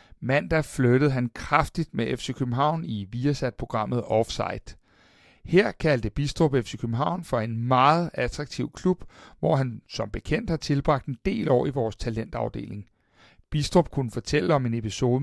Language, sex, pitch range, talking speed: Danish, male, 125-165 Hz, 150 wpm